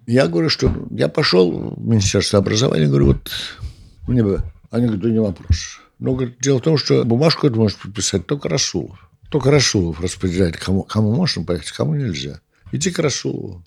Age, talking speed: 60-79, 175 wpm